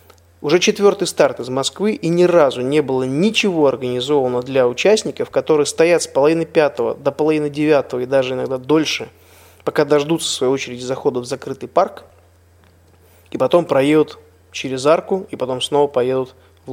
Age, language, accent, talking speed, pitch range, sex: 20-39, Russian, native, 160 wpm, 125-165 Hz, male